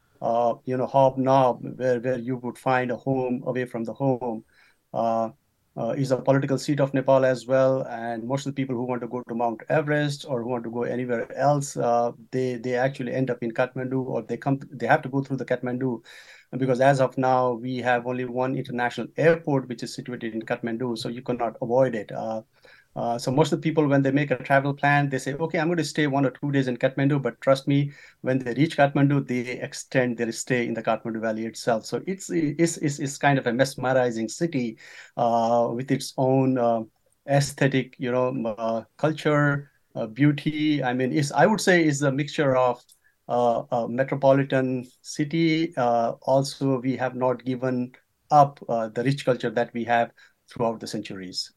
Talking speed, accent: 205 wpm, Indian